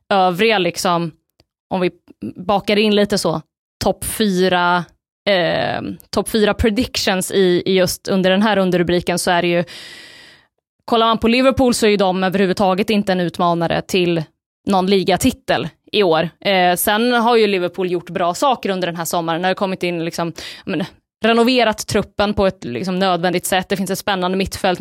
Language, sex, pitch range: Swedish, female, 175-205 Hz